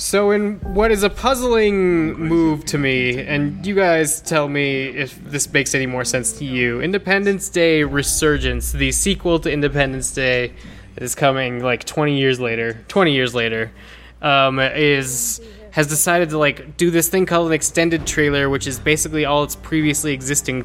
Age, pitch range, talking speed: 20-39, 130-165 Hz, 175 wpm